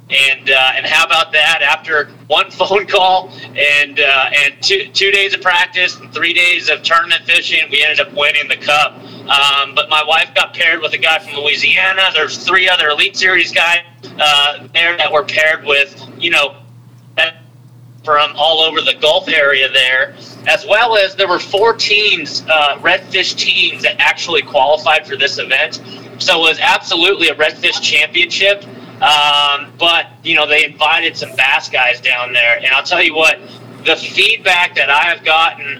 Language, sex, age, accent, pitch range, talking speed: English, male, 30-49, American, 135-170 Hz, 180 wpm